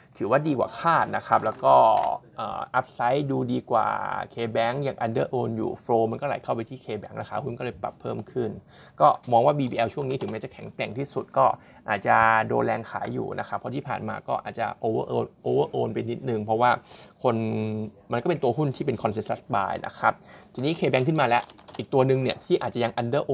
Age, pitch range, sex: 20-39, 115-140 Hz, male